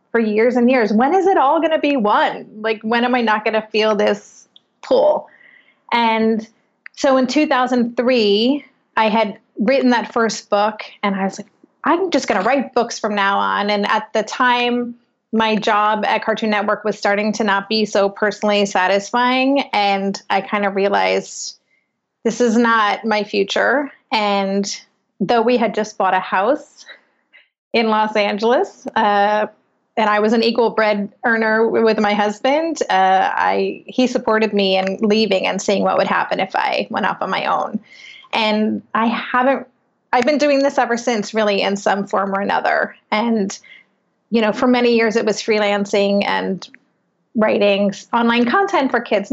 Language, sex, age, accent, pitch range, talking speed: English, female, 30-49, American, 205-240 Hz, 170 wpm